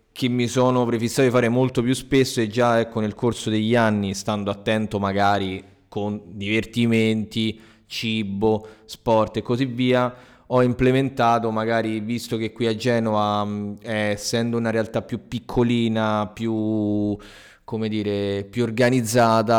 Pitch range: 100-120 Hz